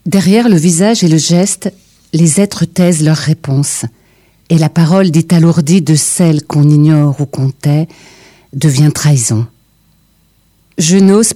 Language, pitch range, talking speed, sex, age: French, 155-195 Hz, 135 wpm, female, 50-69